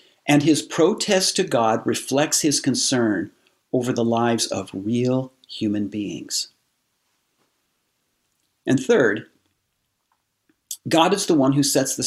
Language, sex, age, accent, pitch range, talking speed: English, male, 50-69, American, 120-160 Hz, 120 wpm